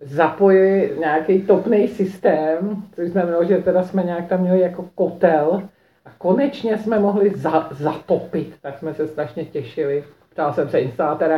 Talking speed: 160 wpm